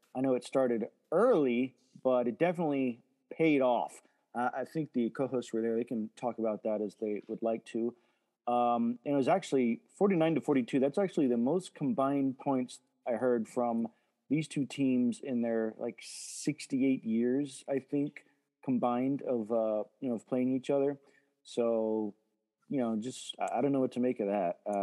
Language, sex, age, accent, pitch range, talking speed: English, male, 30-49, American, 115-145 Hz, 180 wpm